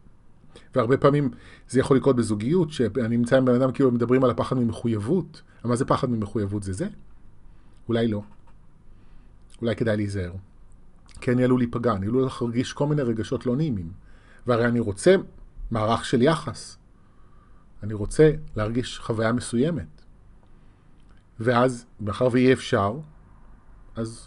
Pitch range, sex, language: 105-130 Hz, male, Hebrew